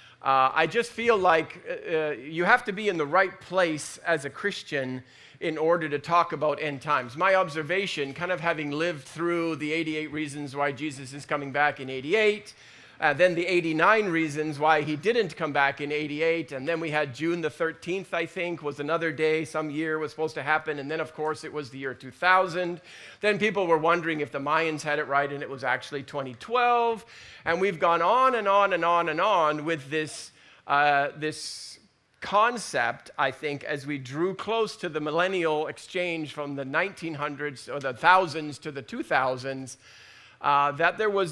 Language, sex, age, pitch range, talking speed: English, male, 40-59, 145-180 Hz, 195 wpm